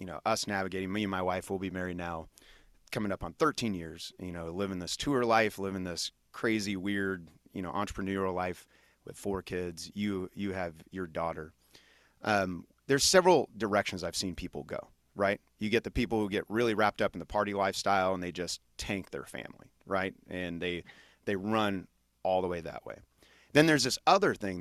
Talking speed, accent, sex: 200 wpm, American, male